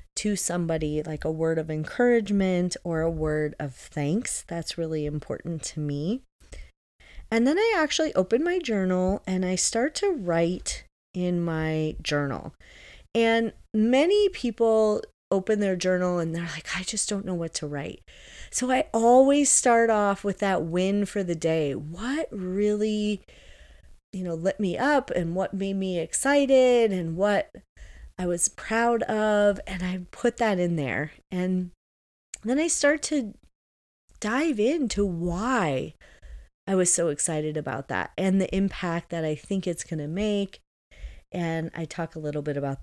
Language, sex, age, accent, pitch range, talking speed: English, female, 30-49, American, 160-220 Hz, 160 wpm